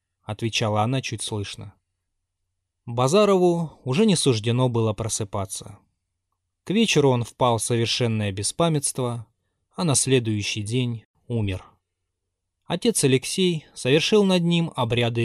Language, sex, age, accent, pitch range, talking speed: Russian, male, 20-39, native, 105-135 Hz, 110 wpm